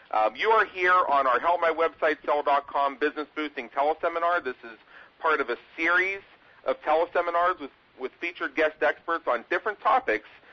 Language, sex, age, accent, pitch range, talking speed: English, male, 40-59, American, 125-165 Hz, 140 wpm